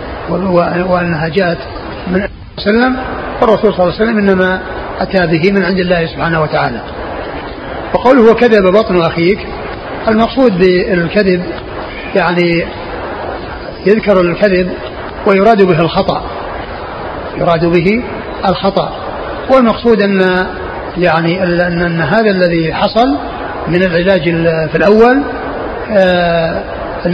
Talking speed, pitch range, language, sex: 110 wpm, 175-200 Hz, Arabic, male